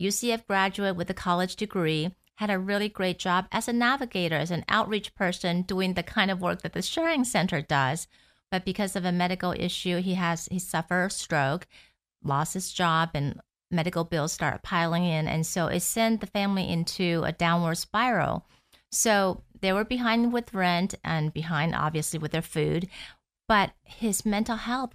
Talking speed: 180 wpm